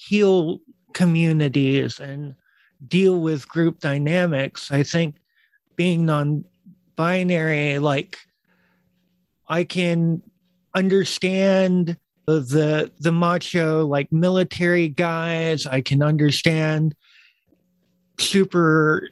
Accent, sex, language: American, male, English